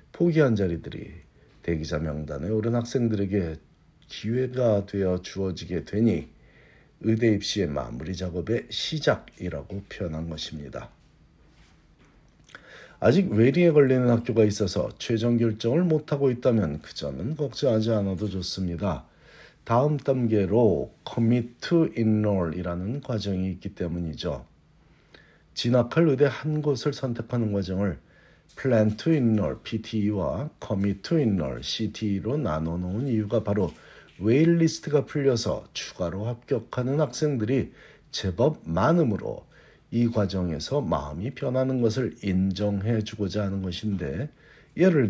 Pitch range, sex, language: 95-130 Hz, male, Korean